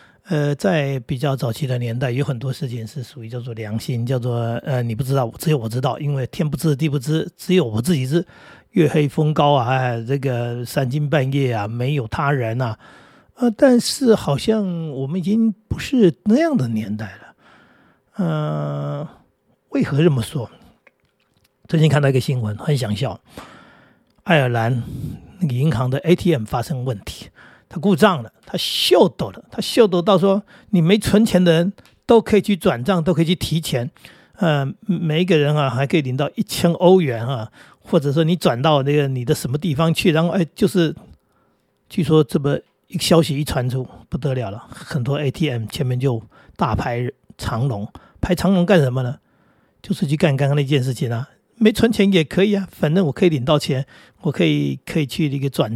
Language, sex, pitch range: Chinese, male, 130-175 Hz